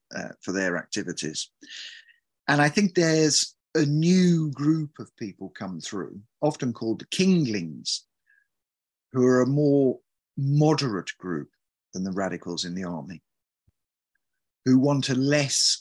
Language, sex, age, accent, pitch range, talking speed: English, male, 50-69, British, 100-155 Hz, 135 wpm